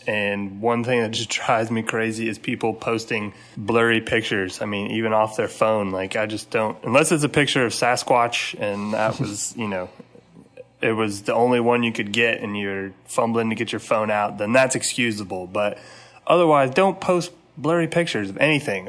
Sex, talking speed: male, 195 wpm